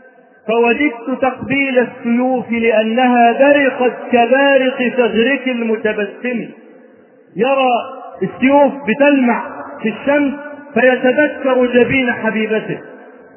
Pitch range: 235-270 Hz